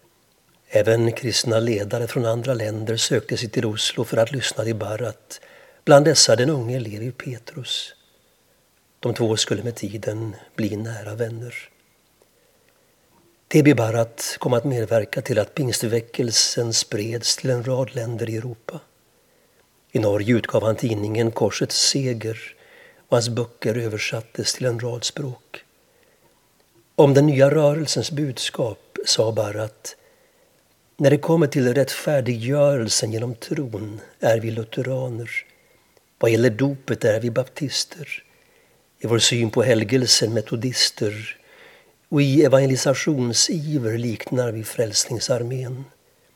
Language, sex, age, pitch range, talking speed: Swedish, male, 60-79, 115-135 Hz, 120 wpm